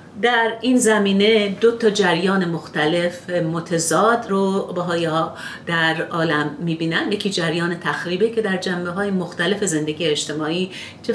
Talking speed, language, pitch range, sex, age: 125 wpm, Persian, 160-220 Hz, female, 40-59